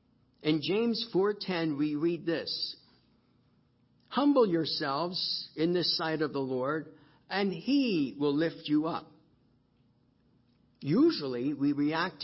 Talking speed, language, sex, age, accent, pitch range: 115 wpm, English, male, 50-69, American, 135-175 Hz